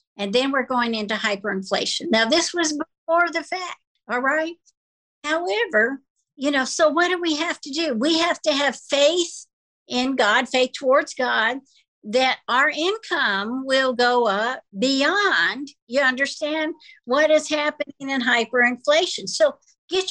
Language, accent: English, American